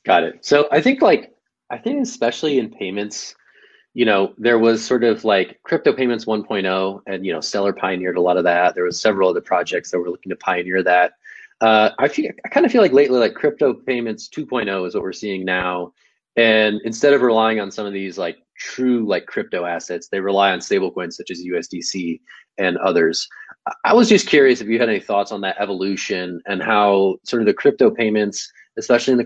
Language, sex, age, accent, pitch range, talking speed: English, male, 20-39, American, 95-120 Hz, 215 wpm